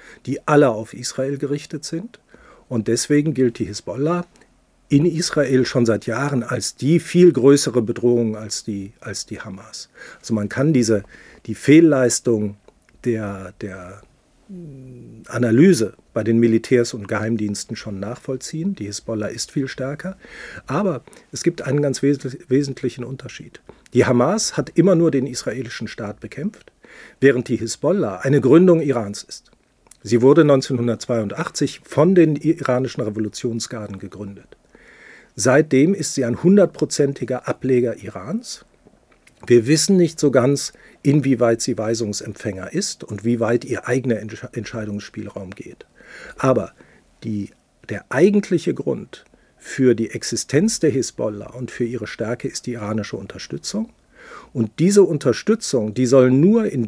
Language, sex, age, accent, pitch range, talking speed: German, male, 50-69, German, 115-150 Hz, 130 wpm